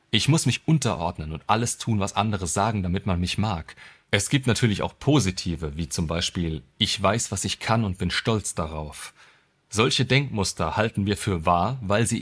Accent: German